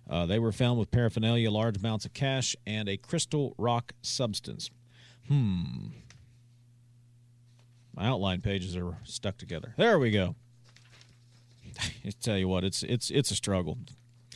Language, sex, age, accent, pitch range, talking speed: English, male, 40-59, American, 120-150 Hz, 140 wpm